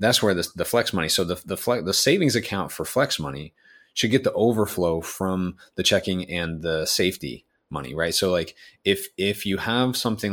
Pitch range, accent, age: 85-105 Hz, American, 30-49